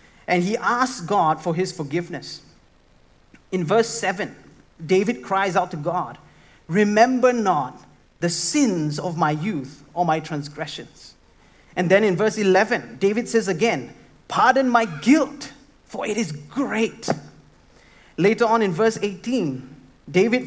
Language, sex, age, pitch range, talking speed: English, male, 30-49, 155-230 Hz, 135 wpm